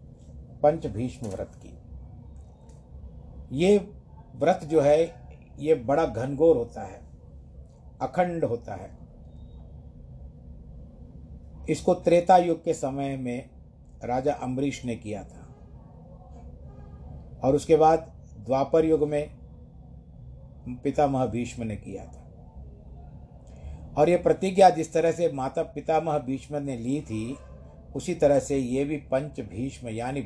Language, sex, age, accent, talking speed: Hindi, male, 50-69, native, 115 wpm